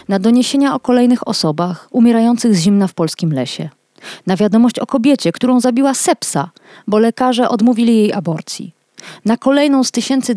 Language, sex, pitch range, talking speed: Polish, female, 195-260 Hz, 155 wpm